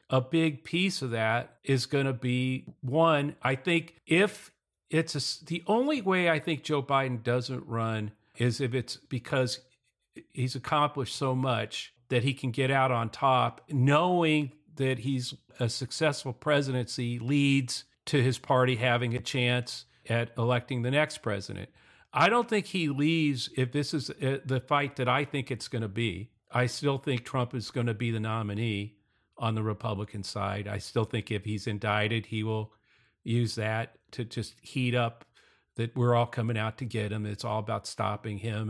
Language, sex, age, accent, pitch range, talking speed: English, male, 50-69, American, 115-140 Hz, 175 wpm